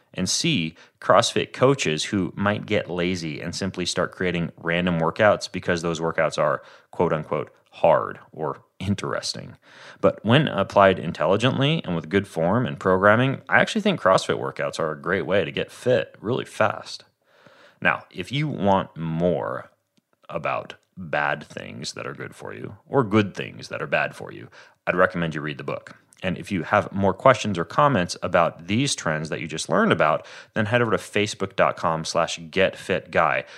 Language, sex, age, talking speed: English, male, 30-49, 170 wpm